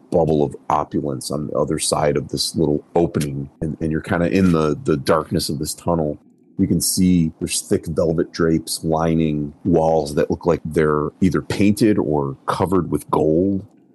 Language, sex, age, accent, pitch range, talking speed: English, male, 30-49, American, 75-85 Hz, 180 wpm